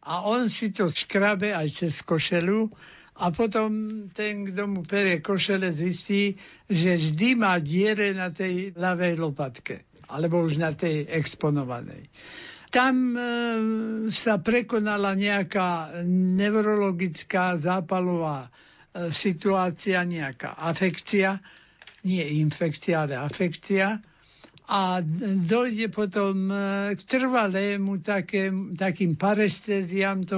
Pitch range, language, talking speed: 175-205 Hz, Slovak, 105 wpm